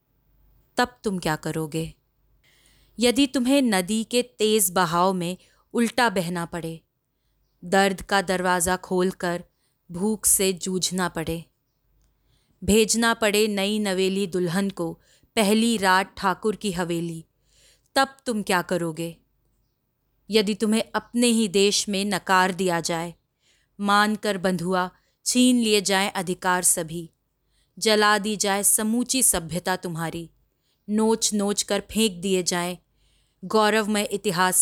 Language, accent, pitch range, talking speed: Hindi, native, 170-215 Hz, 120 wpm